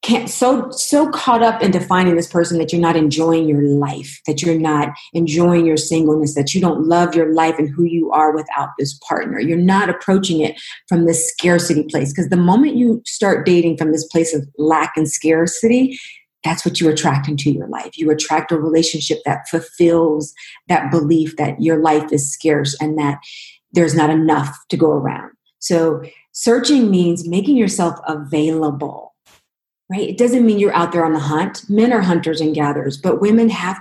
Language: English